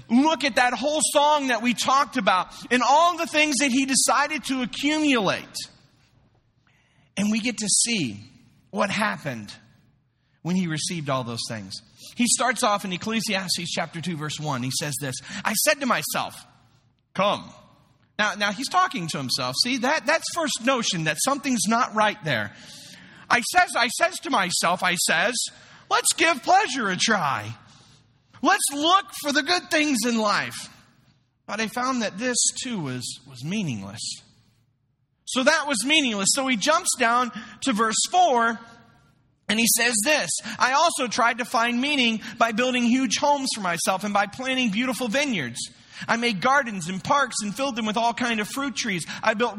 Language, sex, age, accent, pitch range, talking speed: English, male, 40-59, American, 175-260 Hz, 170 wpm